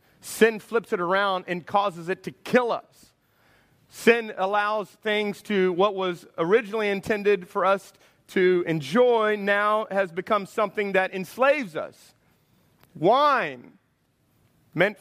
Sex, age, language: male, 30-49, English